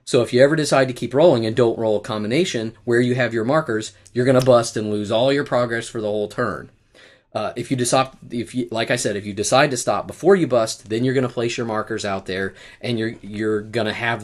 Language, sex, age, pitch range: English, male, 30-49, 105-130 Hz